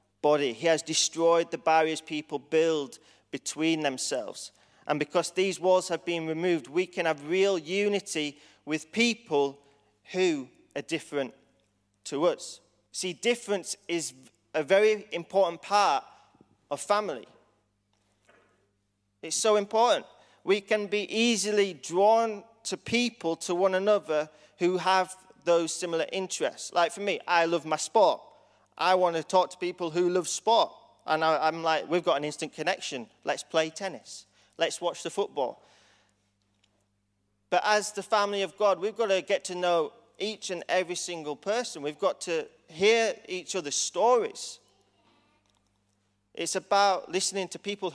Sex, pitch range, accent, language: male, 155-200 Hz, British, English